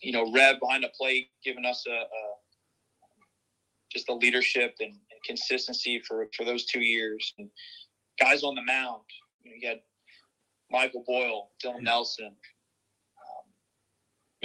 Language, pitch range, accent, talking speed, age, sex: English, 115-135 Hz, American, 140 wpm, 20-39, male